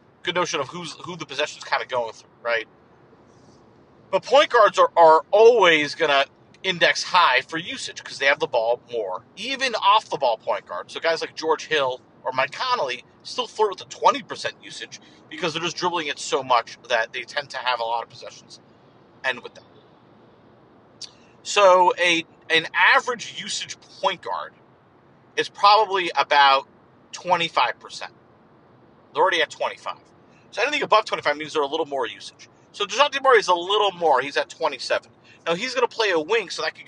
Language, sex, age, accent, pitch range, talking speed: English, male, 50-69, American, 145-210 Hz, 190 wpm